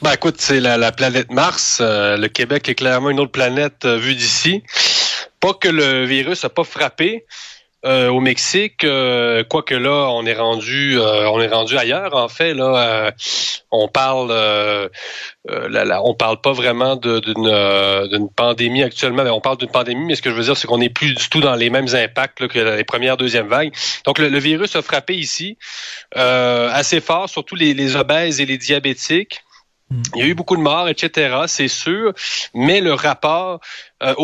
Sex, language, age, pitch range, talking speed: male, French, 30-49, 120-150 Hz, 205 wpm